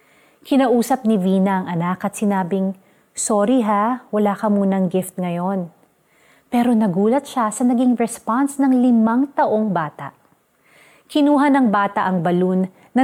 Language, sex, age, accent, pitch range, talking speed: Filipino, female, 30-49, native, 190-245 Hz, 140 wpm